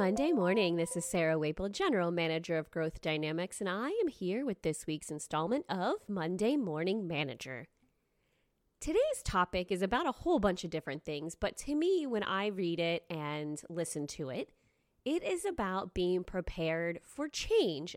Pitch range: 170-235 Hz